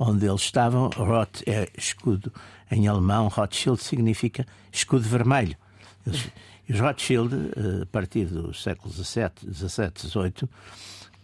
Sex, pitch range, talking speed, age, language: male, 95-120 Hz, 115 wpm, 60-79, Portuguese